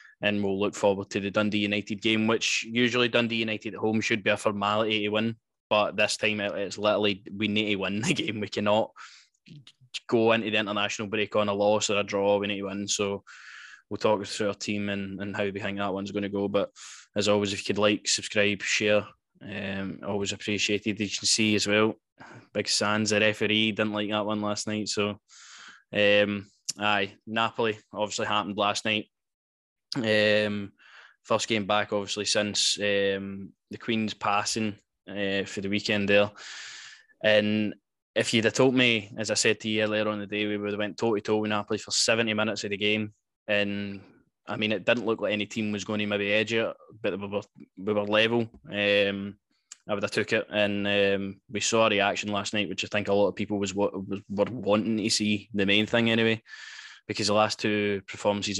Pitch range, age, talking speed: 100-110 Hz, 10-29, 210 wpm